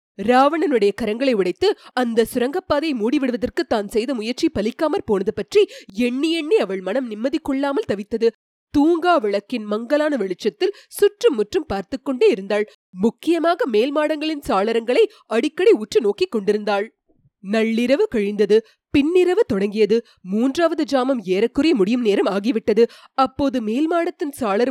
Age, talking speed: 20-39, 110 wpm